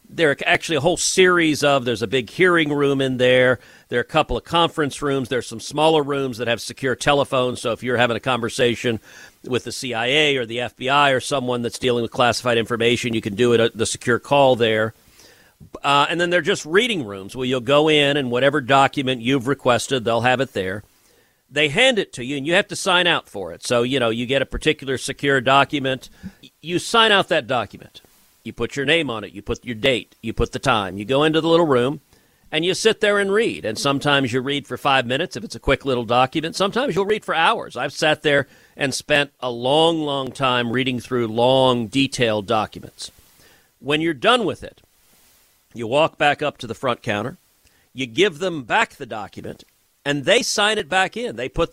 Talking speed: 220 wpm